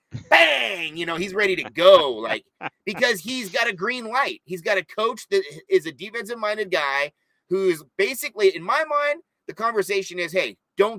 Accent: American